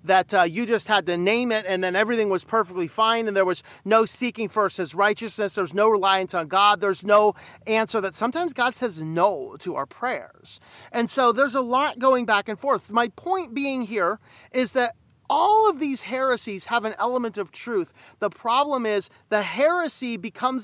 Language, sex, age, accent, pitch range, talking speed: English, male, 40-59, American, 205-255 Hz, 200 wpm